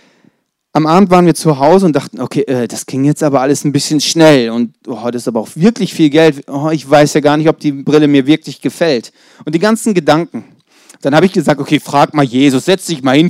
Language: German